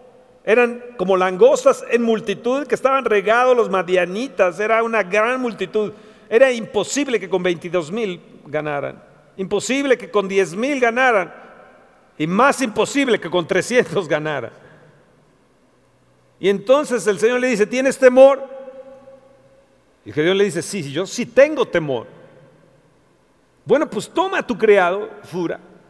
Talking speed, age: 140 wpm, 50-69